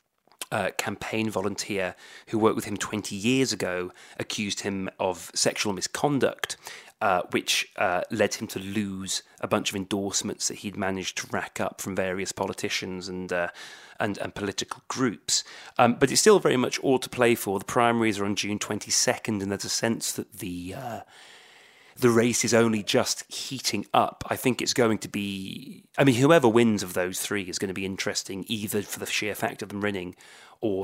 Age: 30-49